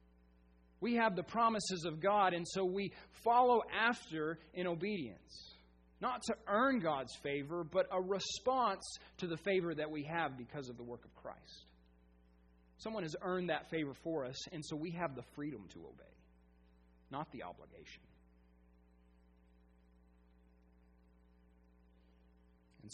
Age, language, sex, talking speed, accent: 40-59, English, male, 135 wpm, American